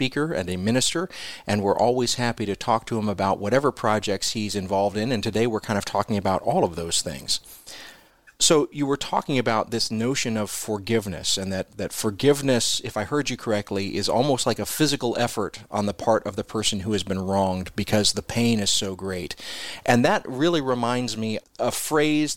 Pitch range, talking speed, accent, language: 105-125 Hz, 205 wpm, American, English